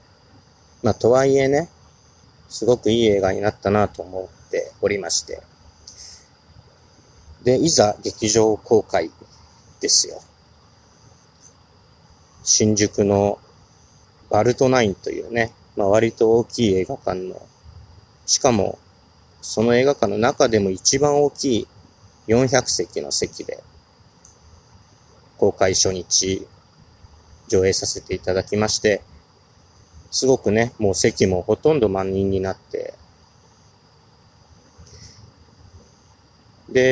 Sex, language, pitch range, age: male, Japanese, 95-125 Hz, 40-59